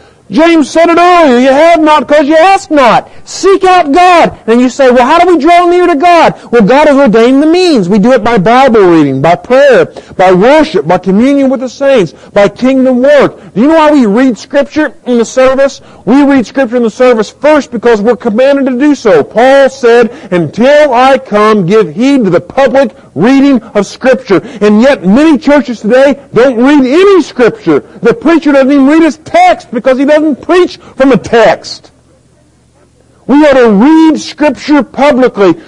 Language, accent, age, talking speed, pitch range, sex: English, American, 50-69, 190 wpm, 215-295 Hz, male